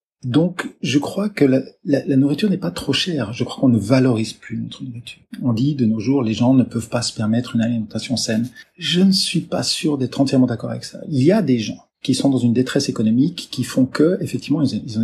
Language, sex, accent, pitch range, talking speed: French, male, French, 120-145 Hz, 245 wpm